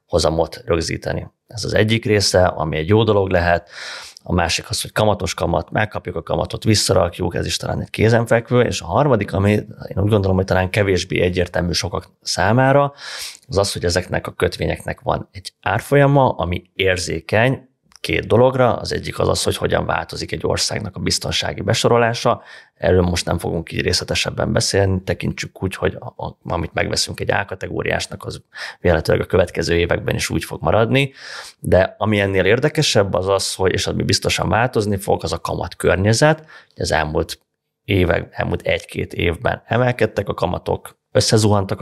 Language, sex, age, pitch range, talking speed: Hungarian, male, 30-49, 90-120 Hz, 165 wpm